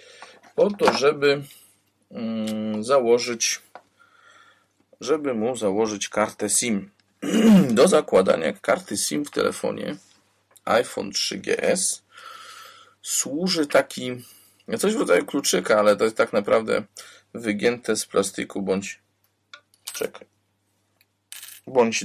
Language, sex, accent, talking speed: Polish, male, native, 95 wpm